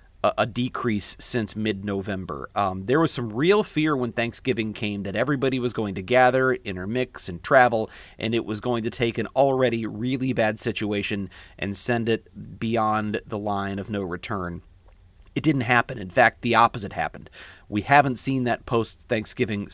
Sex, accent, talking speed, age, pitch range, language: male, American, 165 wpm, 40-59, 100-125 Hz, English